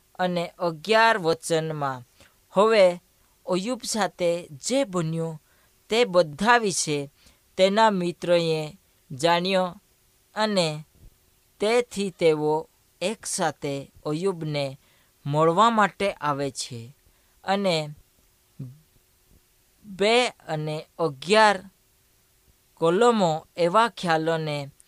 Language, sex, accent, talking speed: Hindi, female, native, 45 wpm